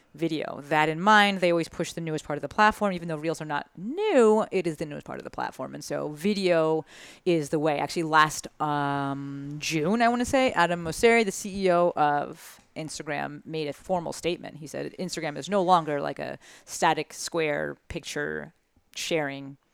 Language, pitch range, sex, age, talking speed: English, 150-185 Hz, female, 30-49, 190 wpm